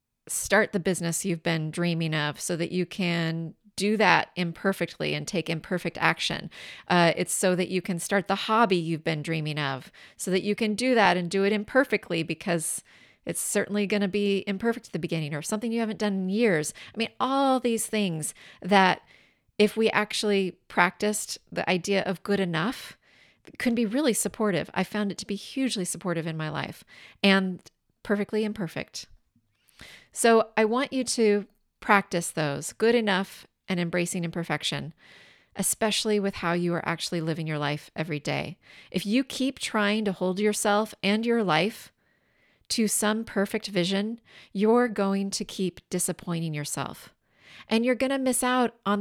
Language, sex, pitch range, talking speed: English, female, 175-215 Hz, 175 wpm